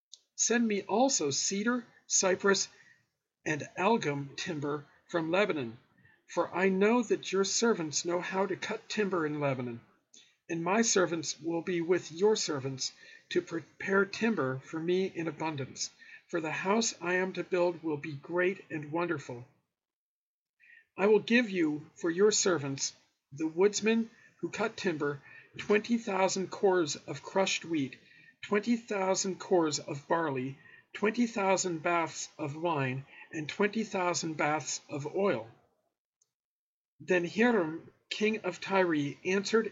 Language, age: English, 50-69